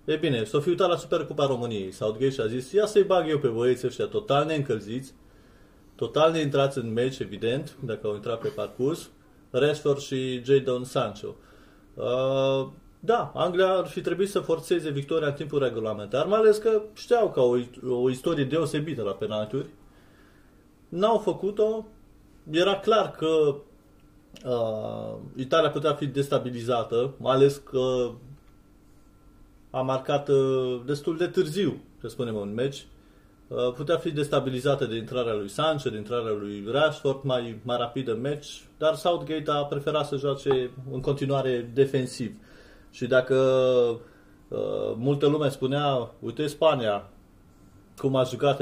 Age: 30-49